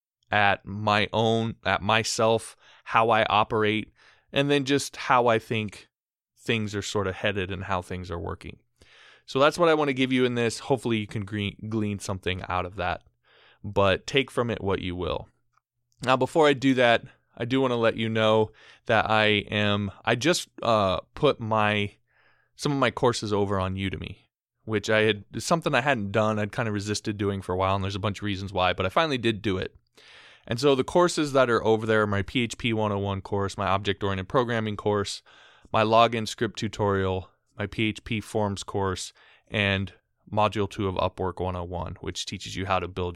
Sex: male